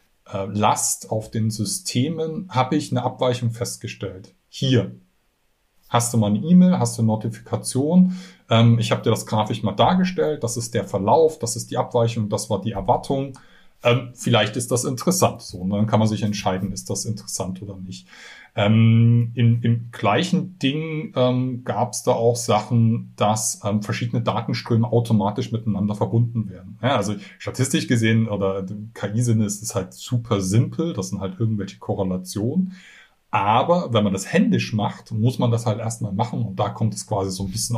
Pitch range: 105-125 Hz